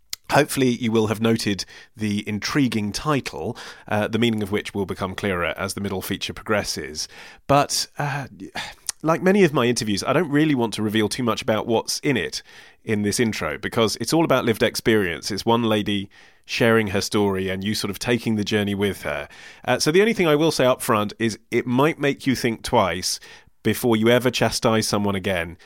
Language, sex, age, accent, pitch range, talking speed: English, male, 30-49, British, 105-130 Hz, 205 wpm